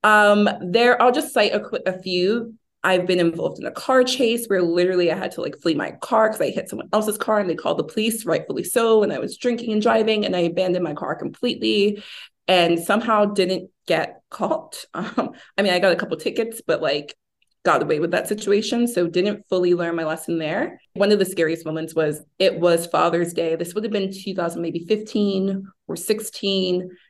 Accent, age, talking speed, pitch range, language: American, 20-39, 210 wpm, 175-215 Hz, English